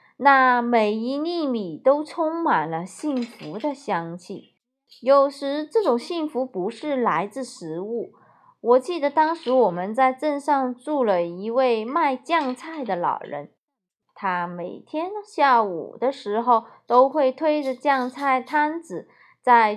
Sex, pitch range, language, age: female, 215-285 Hz, Chinese, 20-39